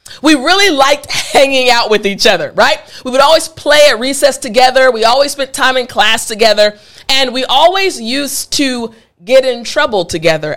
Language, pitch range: English, 205-295 Hz